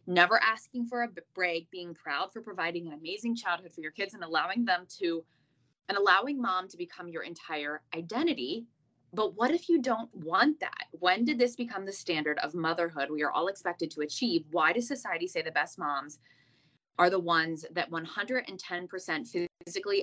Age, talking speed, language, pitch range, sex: 20-39, 185 wpm, English, 155-210 Hz, female